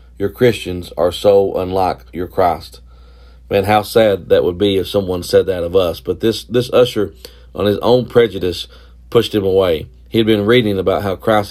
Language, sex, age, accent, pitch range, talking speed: English, male, 40-59, American, 85-115 Hz, 190 wpm